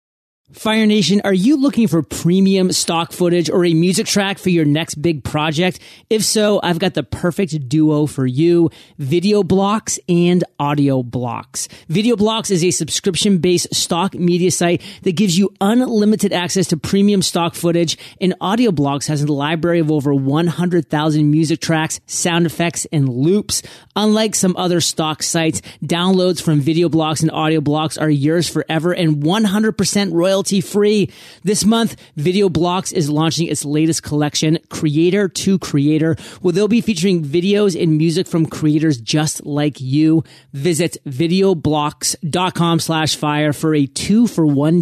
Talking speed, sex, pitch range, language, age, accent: 155 wpm, male, 155-185 Hz, English, 30-49, American